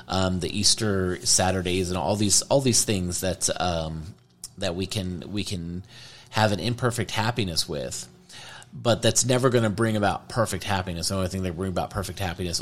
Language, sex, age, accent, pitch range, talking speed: English, male, 30-49, American, 90-115 Hz, 185 wpm